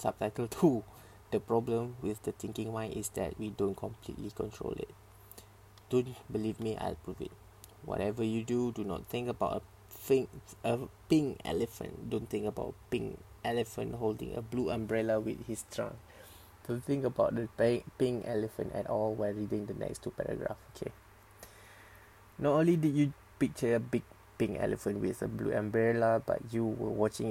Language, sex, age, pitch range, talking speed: English, male, 20-39, 105-115 Hz, 170 wpm